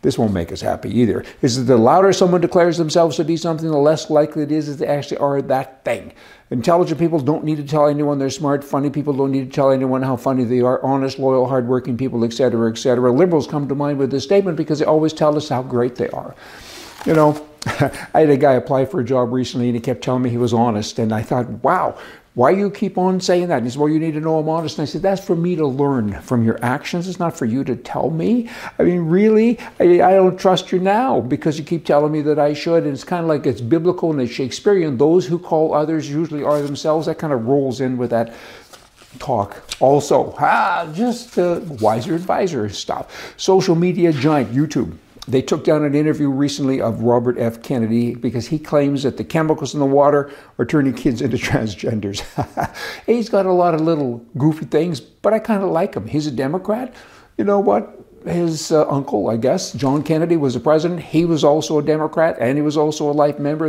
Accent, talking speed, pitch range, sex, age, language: American, 230 wpm, 130-170 Hz, male, 60-79, English